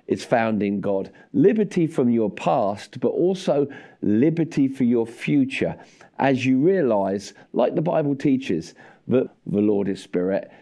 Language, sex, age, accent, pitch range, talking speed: English, male, 50-69, British, 105-140 Hz, 145 wpm